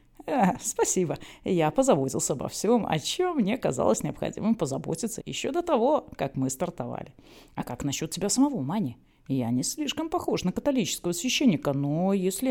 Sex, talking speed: female, 155 wpm